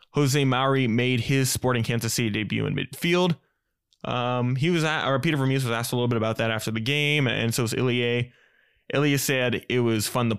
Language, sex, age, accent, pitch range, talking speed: English, male, 20-39, American, 115-135 Hz, 215 wpm